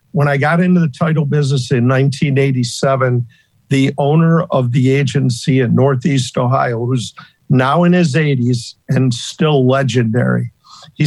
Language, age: English, 50-69